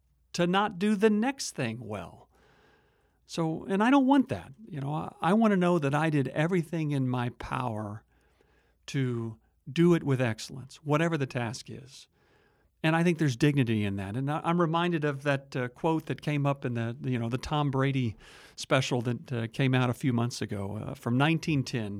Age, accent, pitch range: 50-69, American, 125-155 Hz